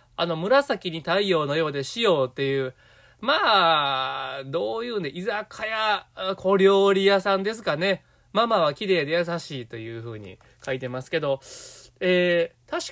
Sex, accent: male, native